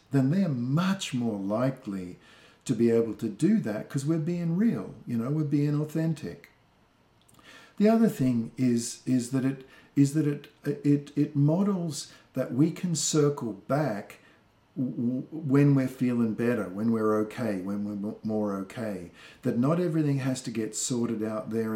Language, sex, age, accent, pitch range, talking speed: English, male, 50-69, Australian, 120-160 Hz, 165 wpm